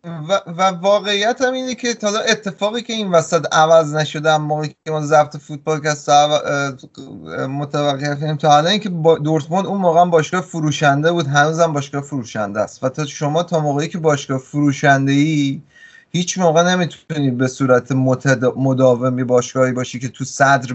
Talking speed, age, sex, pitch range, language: 155 wpm, 30-49, male, 130-165 Hz, Persian